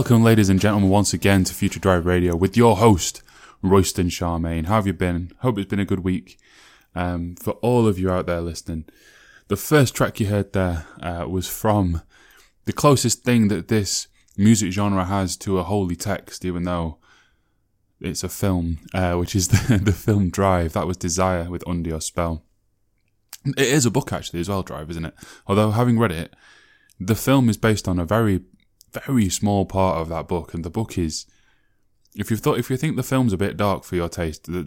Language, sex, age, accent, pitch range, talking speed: English, male, 20-39, British, 90-110 Hz, 200 wpm